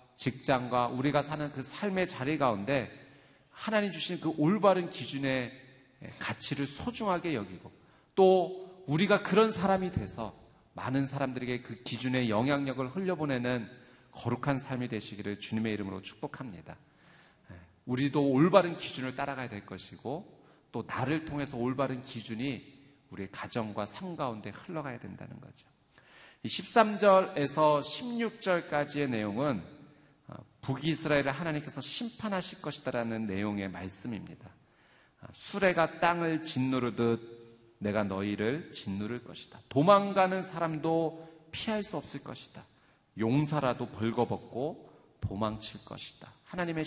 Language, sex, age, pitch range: Korean, male, 40-59, 115-160 Hz